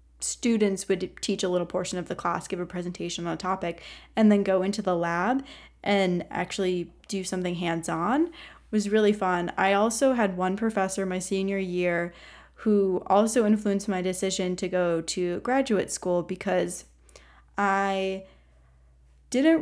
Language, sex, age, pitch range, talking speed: English, female, 10-29, 180-220 Hz, 155 wpm